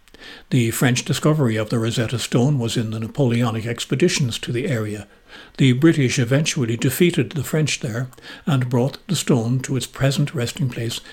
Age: 60-79